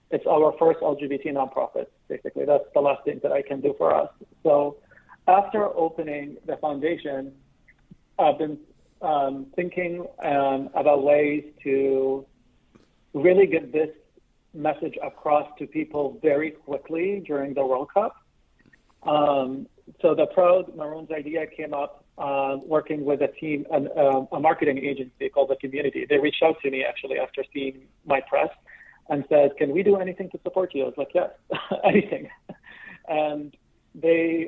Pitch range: 140-165 Hz